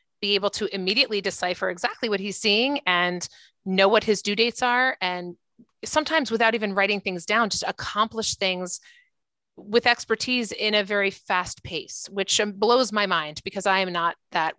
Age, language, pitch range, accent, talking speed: 30-49, English, 185-230 Hz, American, 175 wpm